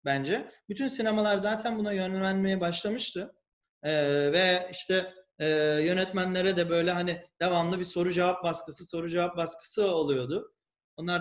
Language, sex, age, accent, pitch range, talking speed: Turkish, male, 40-59, native, 165-225 Hz, 135 wpm